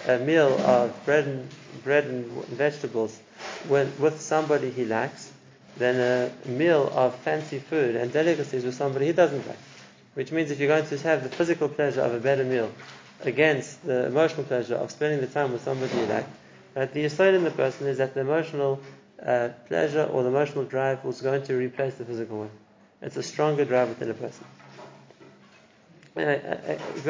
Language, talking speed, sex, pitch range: English, 175 wpm, male, 125-145 Hz